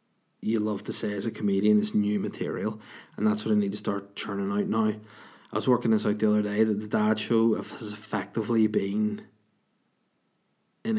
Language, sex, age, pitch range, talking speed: English, male, 20-39, 105-120 Hz, 195 wpm